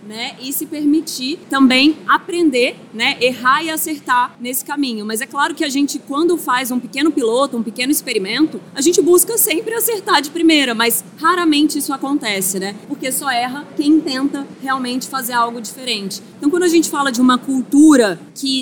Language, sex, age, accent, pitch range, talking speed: Portuguese, female, 20-39, Brazilian, 240-300 Hz, 180 wpm